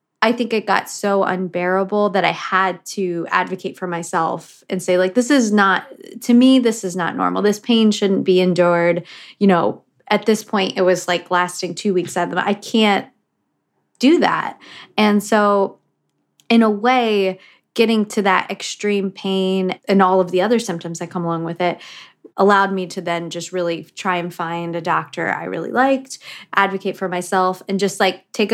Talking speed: 185 wpm